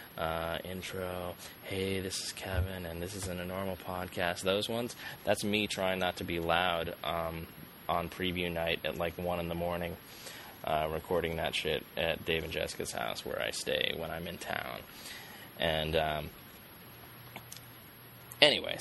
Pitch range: 85-110 Hz